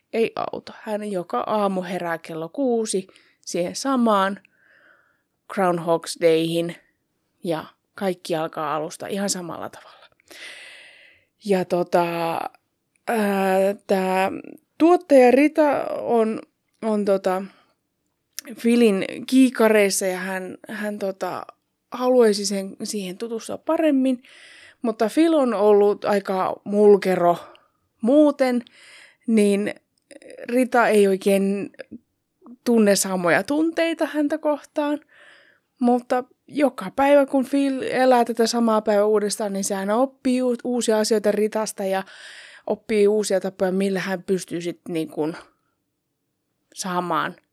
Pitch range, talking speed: 190-255 Hz, 105 wpm